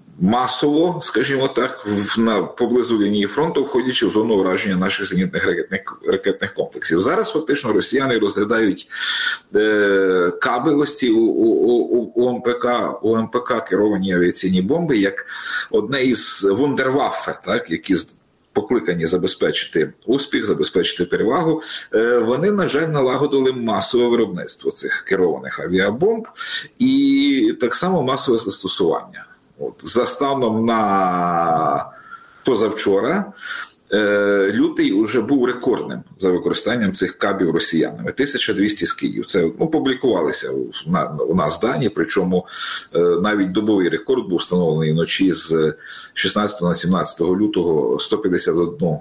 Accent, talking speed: native, 115 wpm